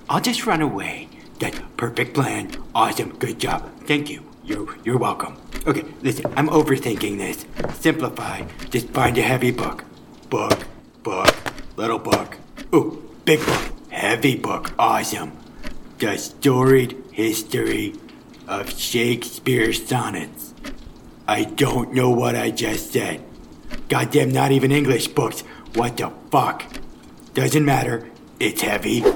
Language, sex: English, male